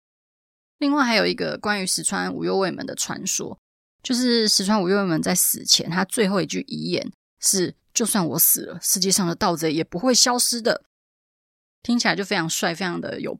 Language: Chinese